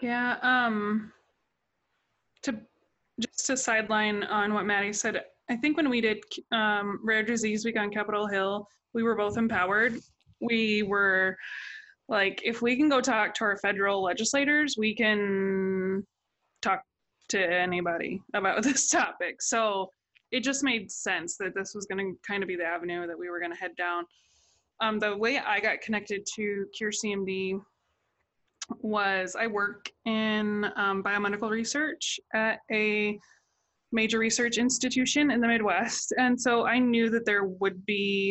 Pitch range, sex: 195-230 Hz, female